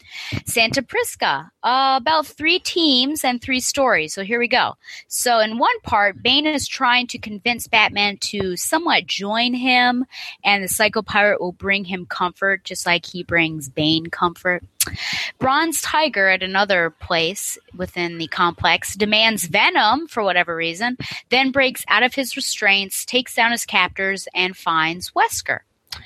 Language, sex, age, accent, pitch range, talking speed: English, female, 30-49, American, 170-245 Hz, 150 wpm